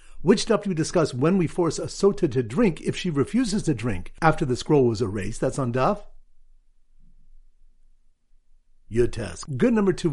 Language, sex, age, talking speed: English, male, 60-79, 180 wpm